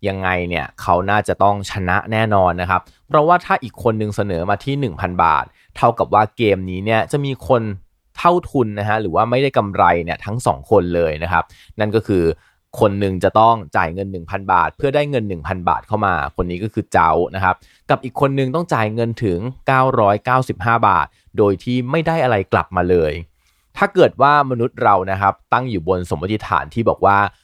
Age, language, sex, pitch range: 20-39, Thai, male, 95-130 Hz